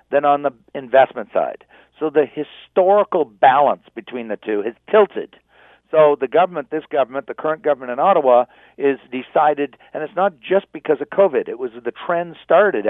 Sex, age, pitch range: male, 50-69, 130-175 Hz